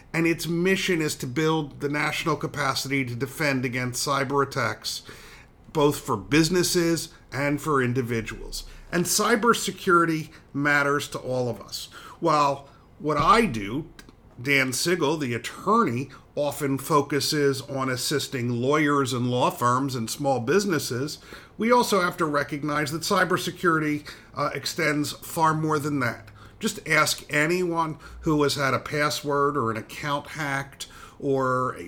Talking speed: 135 wpm